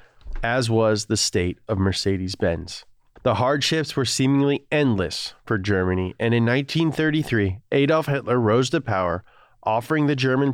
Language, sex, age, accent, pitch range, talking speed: English, male, 30-49, American, 110-140 Hz, 135 wpm